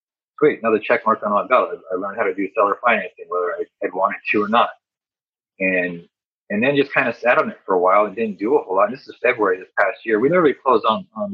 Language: English